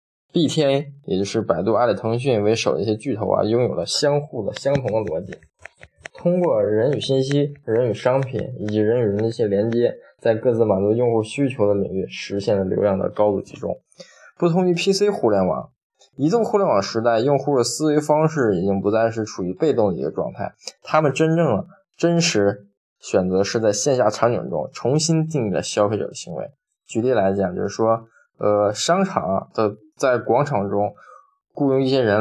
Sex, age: male, 20-39